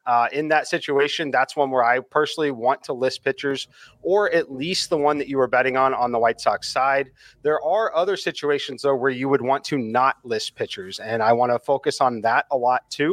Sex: male